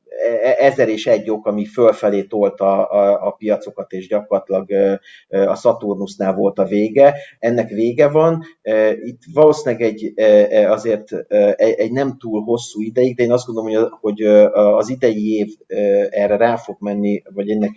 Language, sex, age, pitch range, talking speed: Hungarian, male, 30-49, 105-130 Hz, 150 wpm